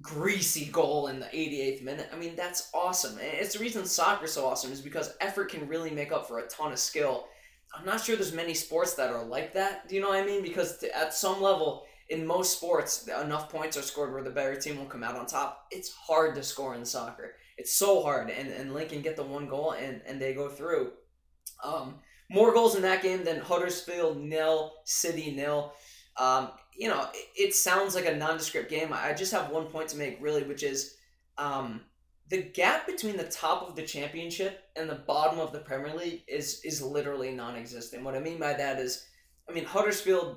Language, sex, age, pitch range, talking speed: English, male, 20-39, 140-180 Hz, 215 wpm